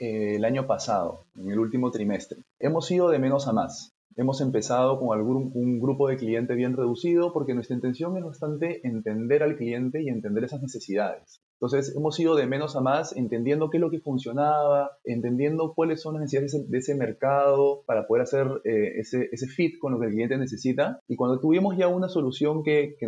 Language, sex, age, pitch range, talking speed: Spanish, male, 30-49, 115-140 Hz, 205 wpm